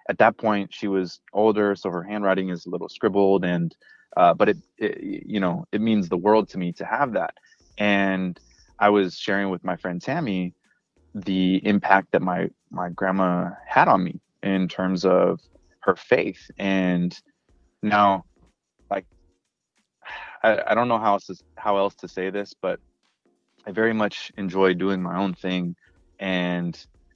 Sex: male